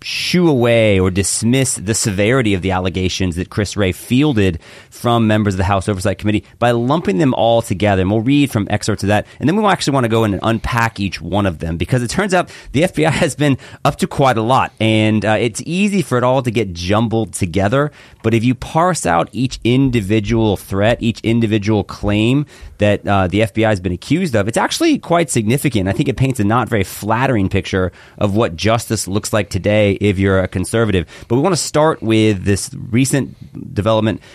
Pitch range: 100-125 Hz